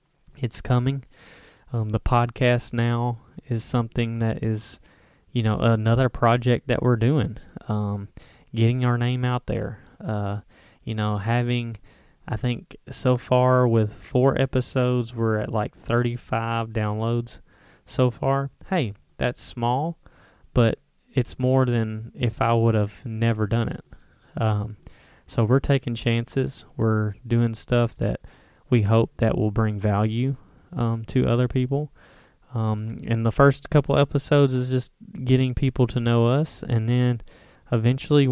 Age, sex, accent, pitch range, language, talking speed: 20-39, male, American, 110-125 Hz, English, 140 wpm